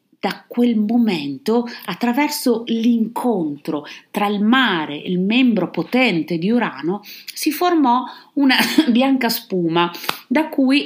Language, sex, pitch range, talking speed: Italian, female, 175-265 Hz, 115 wpm